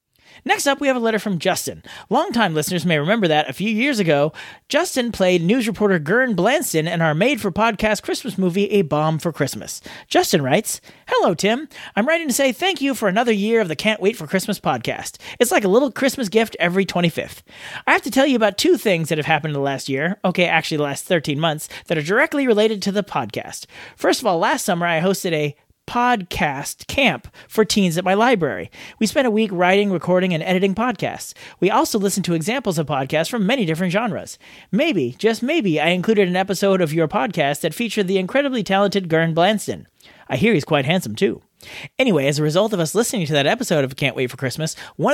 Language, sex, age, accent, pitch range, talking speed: English, male, 40-59, American, 165-230 Hz, 215 wpm